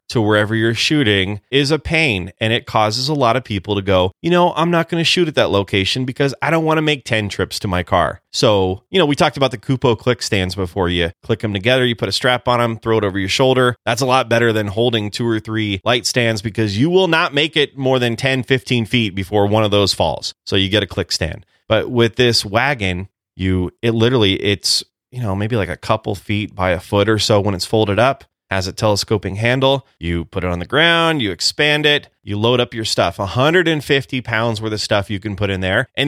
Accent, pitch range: American, 100-130 Hz